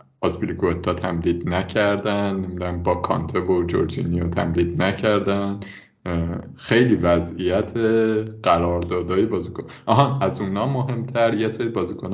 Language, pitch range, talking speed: Persian, 90-115 Hz, 110 wpm